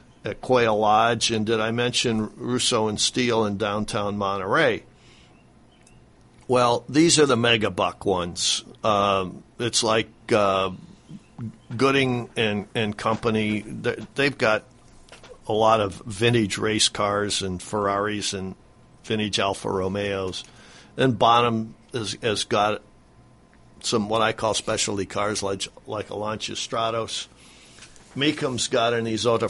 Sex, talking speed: male, 125 wpm